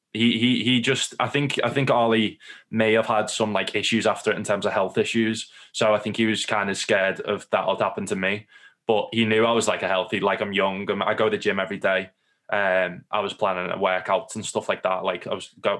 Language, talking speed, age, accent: English, 260 wpm, 20-39, British